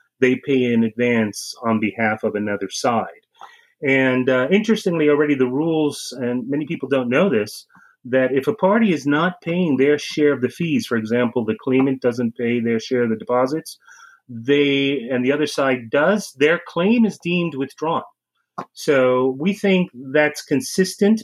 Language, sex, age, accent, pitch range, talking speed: English, male, 30-49, American, 125-165 Hz, 170 wpm